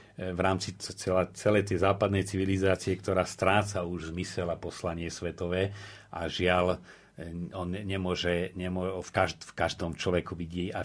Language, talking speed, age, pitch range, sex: Slovak, 140 wpm, 40-59, 90-105 Hz, male